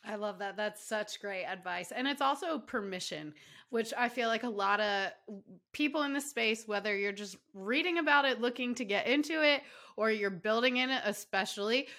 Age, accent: 20-39, American